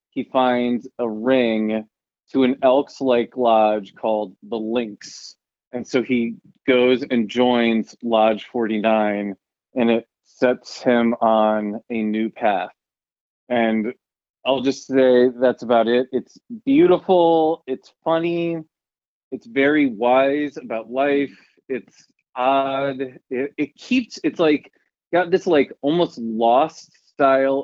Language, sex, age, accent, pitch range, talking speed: English, male, 30-49, American, 115-140 Hz, 125 wpm